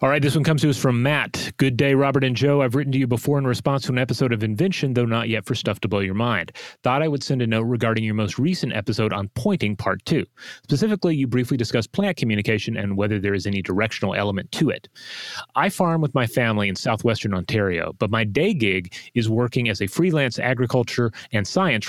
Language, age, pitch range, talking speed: English, 30-49, 110-135 Hz, 235 wpm